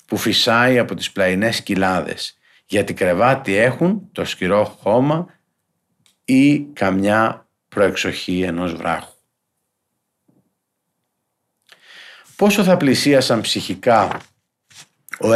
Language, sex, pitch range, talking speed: Greek, male, 105-135 Hz, 85 wpm